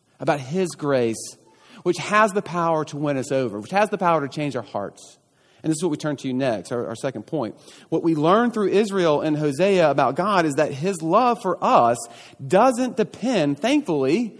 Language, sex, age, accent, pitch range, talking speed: English, male, 40-59, American, 145-195 Hz, 210 wpm